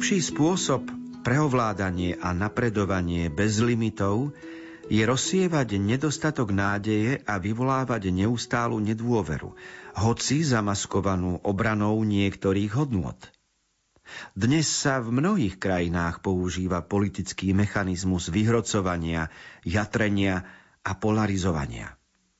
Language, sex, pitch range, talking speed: Slovak, male, 95-130 Hz, 85 wpm